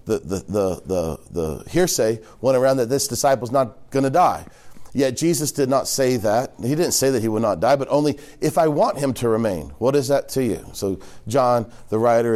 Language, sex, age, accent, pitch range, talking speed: English, male, 40-59, American, 100-135 Hz, 220 wpm